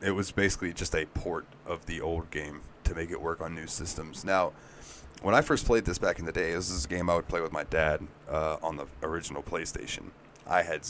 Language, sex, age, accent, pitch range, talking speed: English, male, 30-49, American, 80-95 Hz, 240 wpm